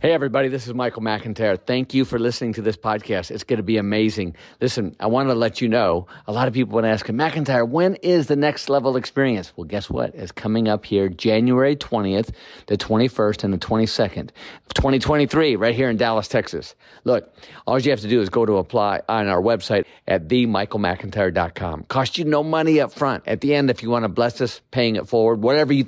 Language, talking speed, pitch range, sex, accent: English, 220 wpm, 110-135 Hz, male, American